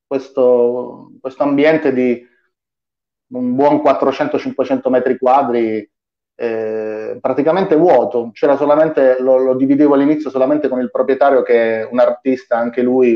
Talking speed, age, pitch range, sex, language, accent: 125 wpm, 30-49, 120-140 Hz, male, Italian, native